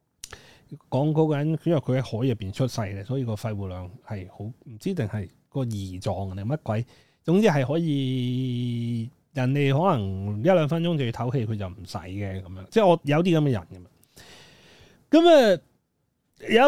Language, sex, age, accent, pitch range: Chinese, male, 30-49, native, 110-150 Hz